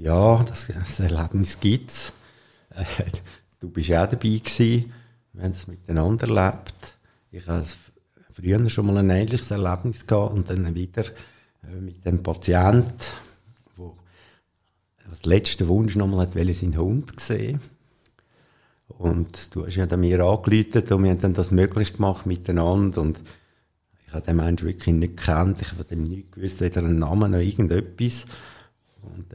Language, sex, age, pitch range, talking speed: German, male, 50-69, 90-115 Hz, 150 wpm